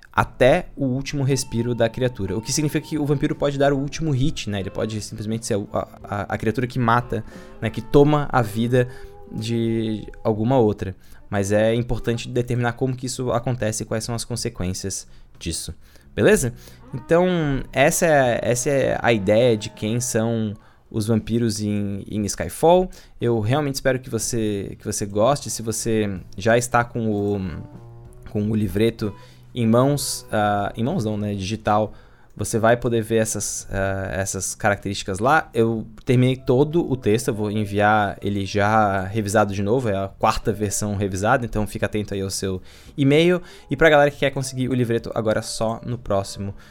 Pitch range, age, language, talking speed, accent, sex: 105-130 Hz, 20-39, Portuguese, 170 wpm, Brazilian, male